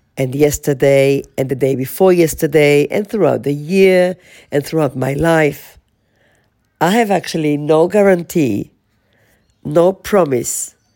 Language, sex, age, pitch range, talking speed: English, female, 50-69, 115-160 Hz, 120 wpm